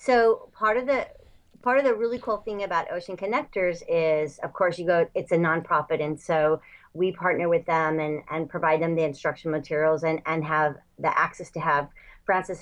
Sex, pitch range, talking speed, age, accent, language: female, 160-195 Hz, 200 wpm, 40-59, American, English